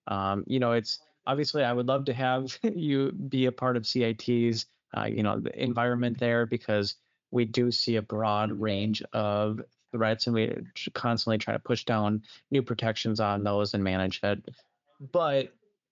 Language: English